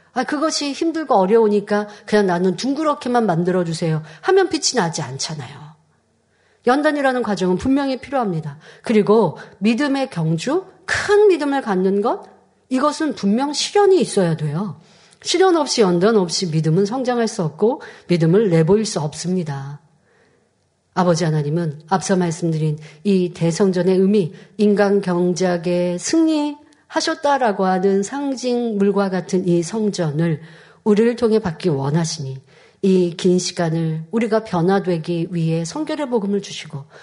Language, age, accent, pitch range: Korean, 40-59, native, 170-250 Hz